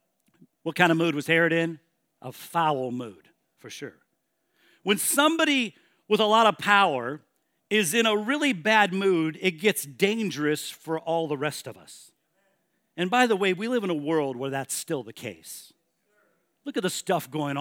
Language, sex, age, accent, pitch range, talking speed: English, male, 50-69, American, 150-195 Hz, 180 wpm